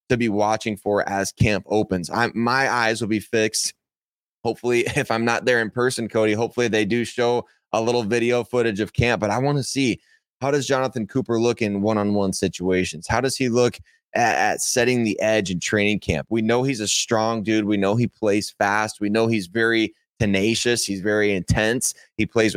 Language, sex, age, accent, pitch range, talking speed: English, male, 20-39, American, 105-125 Hz, 205 wpm